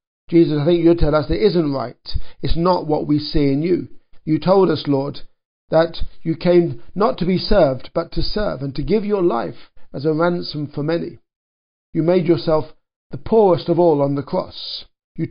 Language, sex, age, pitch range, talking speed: English, male, 50-69, 150-180 Hz, 200 wpm